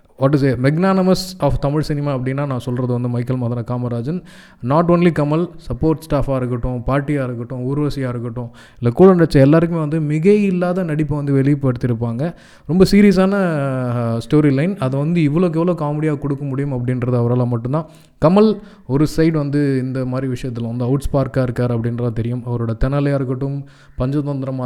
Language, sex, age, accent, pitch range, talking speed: Tamil, male, 20-39, native, 125-155 Hz, 155 wpm